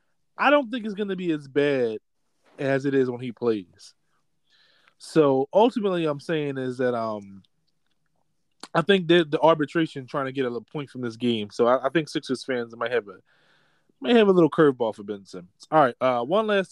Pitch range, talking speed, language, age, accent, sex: 125-165 Hz, 205 wpm, English, 20-39, American, male